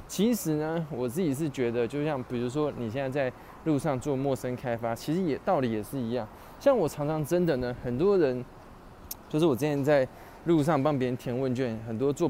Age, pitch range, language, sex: 20-39, 130-180 Hz, Chinese, male